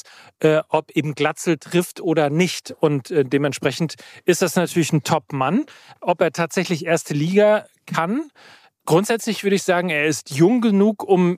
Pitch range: 140-170 Hz